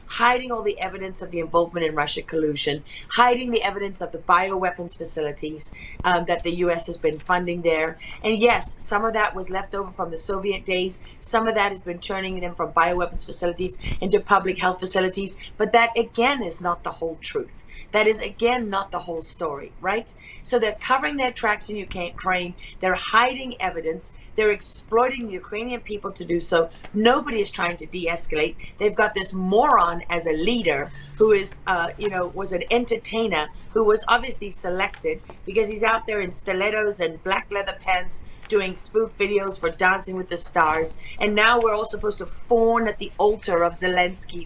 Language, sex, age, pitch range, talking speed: English, female, 40-59, 175-220 Hz, 190 wpm